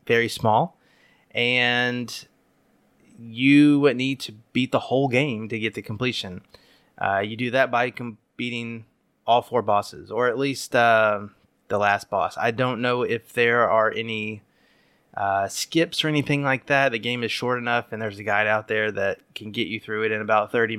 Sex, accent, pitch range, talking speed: male, American, 110-135 Hz, 190 wpm